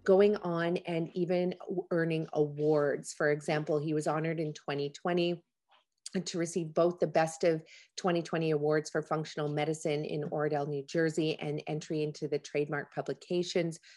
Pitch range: 150-185 Hz